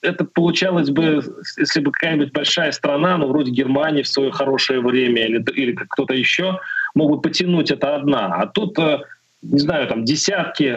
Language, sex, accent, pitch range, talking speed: Russian, male, native, 130-165 Hz, 165 wpm